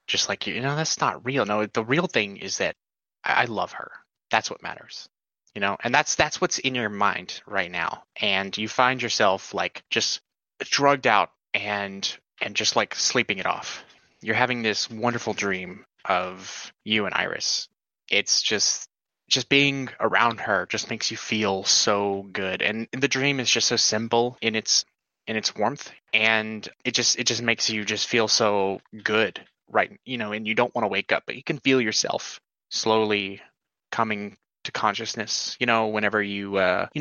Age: 20-39